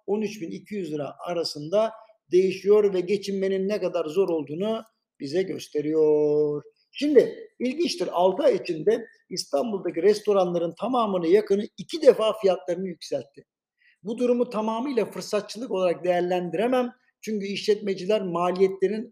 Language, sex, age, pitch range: Turkish, male, 60-79, 175-215 Hz